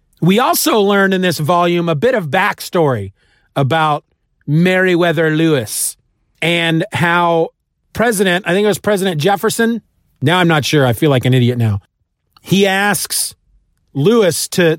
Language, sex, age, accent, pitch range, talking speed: English, male, 40-59, American, 145-195 Hz, 145 wpm